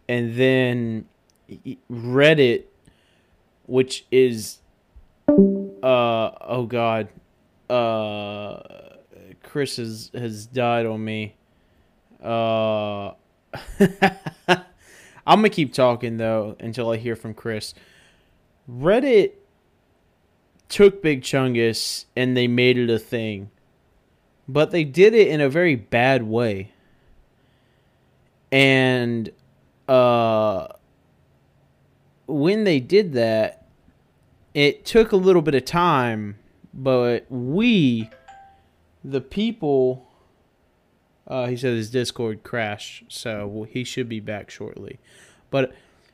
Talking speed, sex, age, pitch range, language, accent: 100 wpm, male, 20-39, 110-175 Hz, English, American